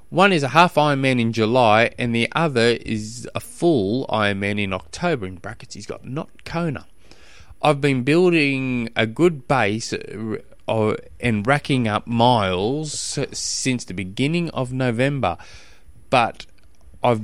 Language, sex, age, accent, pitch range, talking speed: English, male, 20-39, Australian, 105-140 Hz, 135 wpm